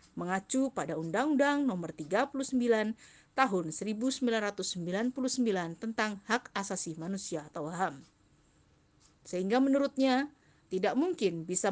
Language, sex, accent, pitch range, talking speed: Indonesian, female, native, 180-250 Hz, 90 wpm